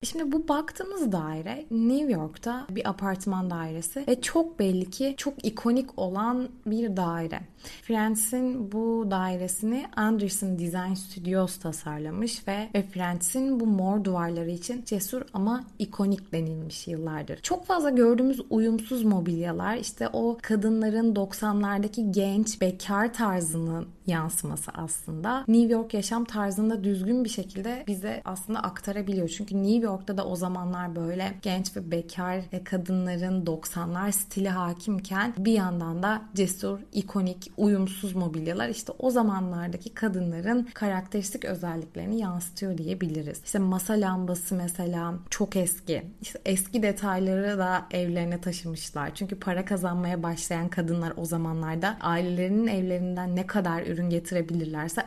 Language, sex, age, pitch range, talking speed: Turkish, female, 20-39, 175-220 Hz, 125 wpm